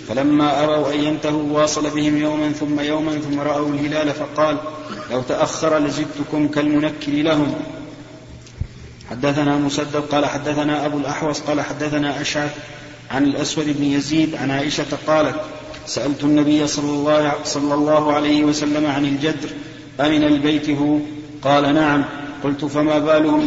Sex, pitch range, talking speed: male, 145-150 Hz, 130 wpm